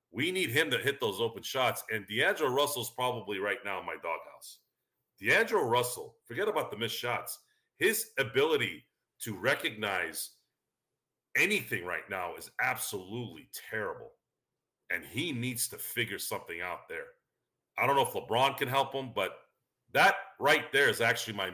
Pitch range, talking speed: 120-170 Hz, 160 wpm